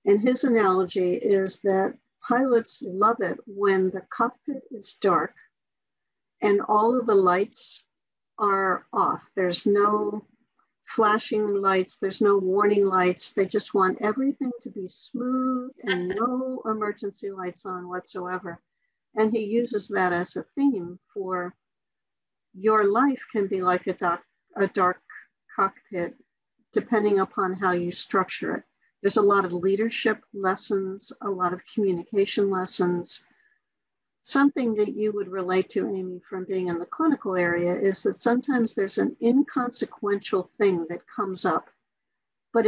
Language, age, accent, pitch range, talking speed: English, 60-79, American, 185-225 Hz, 140 wpm